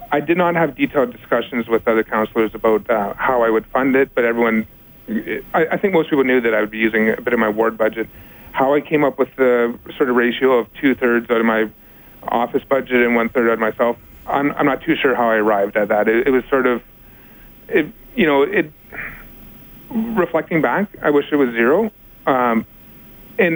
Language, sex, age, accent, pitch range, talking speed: English, male, 30-49, American, 115-145 Hz, 215 wpm